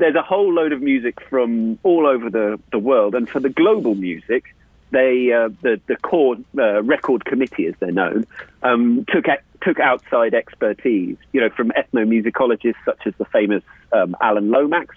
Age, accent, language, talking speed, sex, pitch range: 40-59, British, English, 175 wpm, male, 115-160 Hz